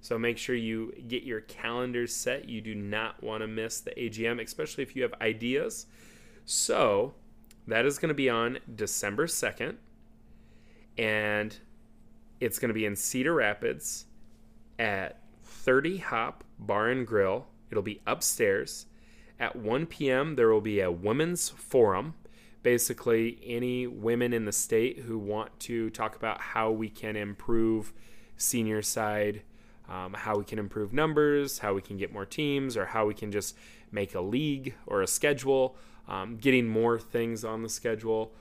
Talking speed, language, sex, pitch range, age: 160 wpm, English, male, 105-125 Hz, 30-49